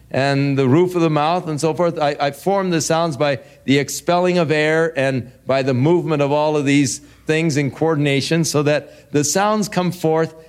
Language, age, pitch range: English, 50-69, 120-145 Hz